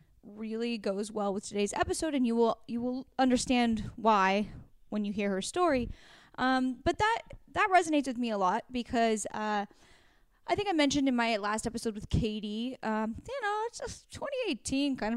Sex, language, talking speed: female, English, 180 wpm